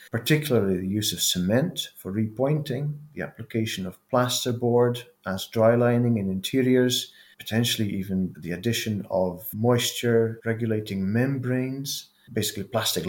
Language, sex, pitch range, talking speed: English, male, 100-120 Hz, 115 wpm